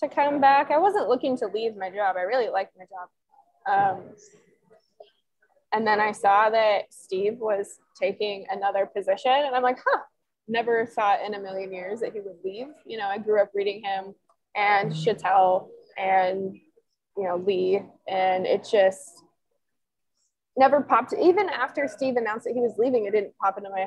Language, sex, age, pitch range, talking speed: English, female, 20-39, 195-260 Hz, 180 wpm